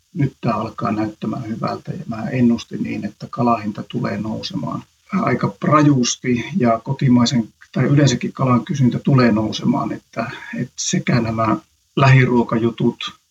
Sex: male